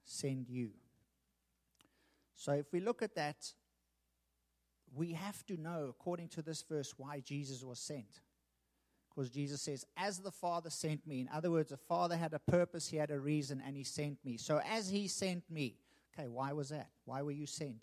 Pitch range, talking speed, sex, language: 135-175 Hz, 190 wpm, male, English